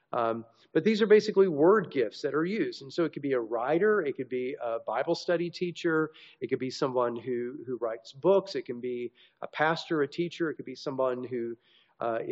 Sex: male